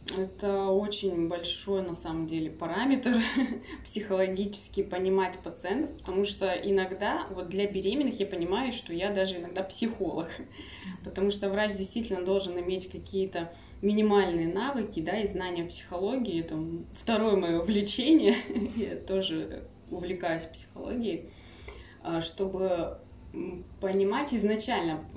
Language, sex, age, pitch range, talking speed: Russian, female, 20-39, 170-215 Hz, 110 wpm